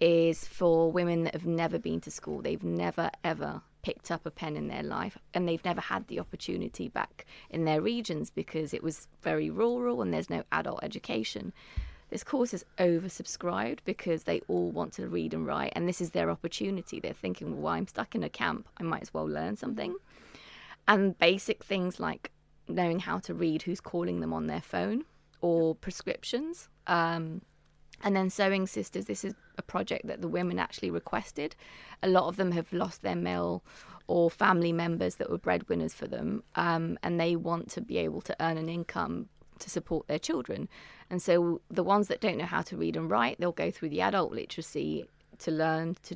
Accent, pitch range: British, 155-190 Hz